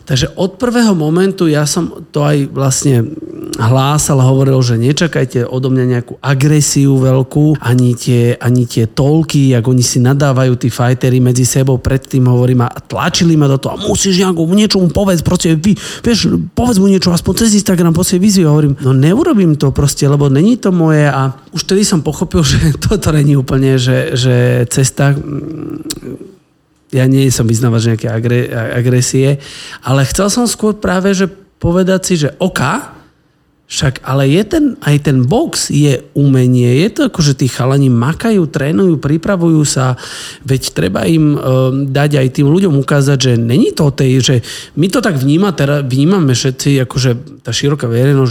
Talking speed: 170 wpm